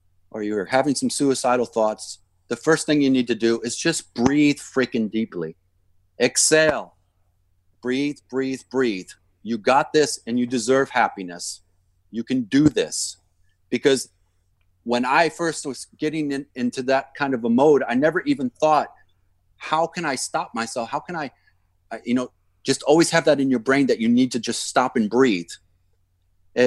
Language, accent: English, American